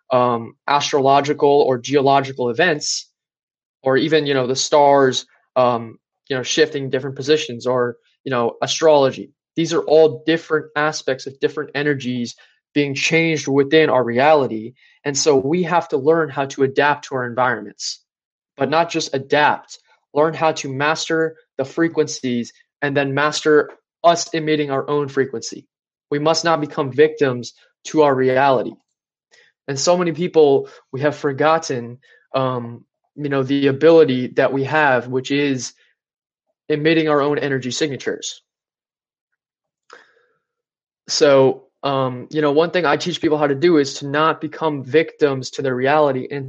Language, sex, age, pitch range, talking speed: English, male, 20-39, 135-155 Hz, 150 wpm